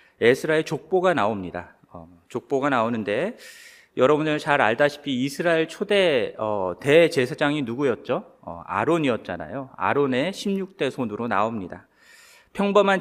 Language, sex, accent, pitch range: Korean, male, native, 140-190 Hz